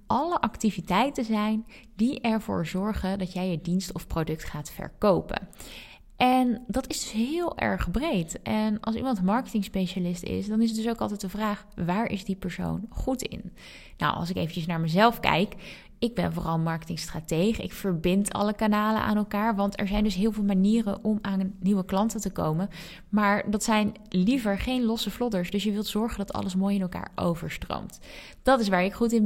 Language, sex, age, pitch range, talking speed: Dutch, female, 20-39, 190-225 Hz, 195 wpm